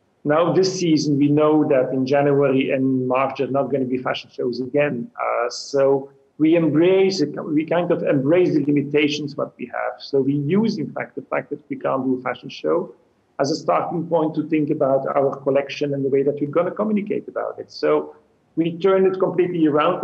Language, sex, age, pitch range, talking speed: English, male, 40-59, 130-160 Hz, 215 wpm